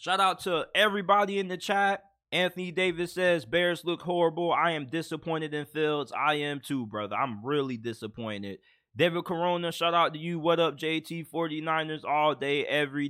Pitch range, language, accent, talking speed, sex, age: 155-220 Hz, English, American, 170 wpm, male, 20-39